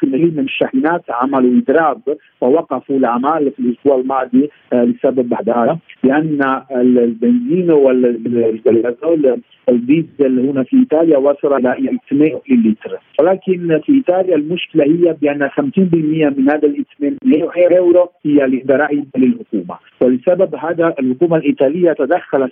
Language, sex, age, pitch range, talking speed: Arabic, male, 50-69, 130-165 Hz, 105 wpm